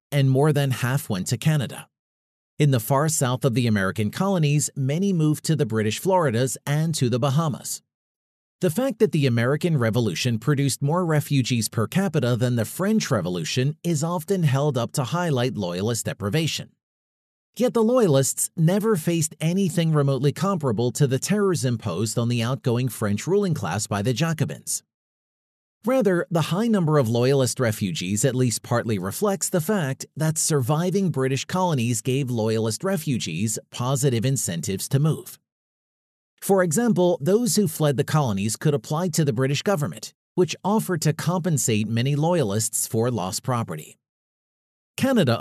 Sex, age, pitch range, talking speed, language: male, 40-59, 120-170 Hz, 155 wpm, English